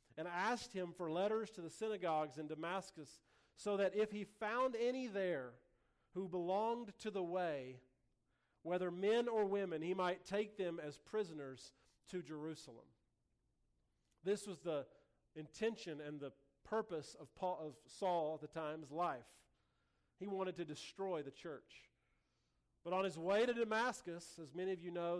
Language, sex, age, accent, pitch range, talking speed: English, male, 40-59, American, 155-195 Hz, 155 wpm